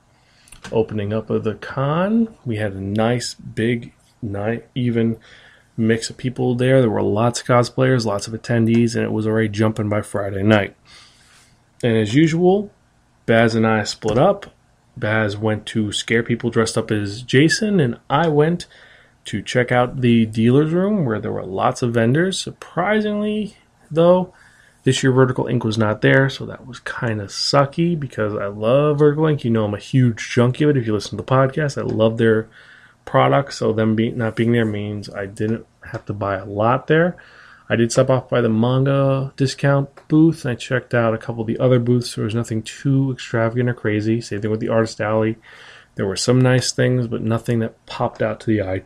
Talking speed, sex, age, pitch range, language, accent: 200 wpm, male, 30-49, 110-135 Hz, English, American